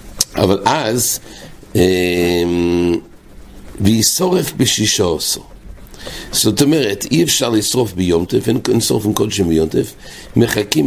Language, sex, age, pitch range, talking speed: English, male, 60-79, 95-125 Hz, 95 wpm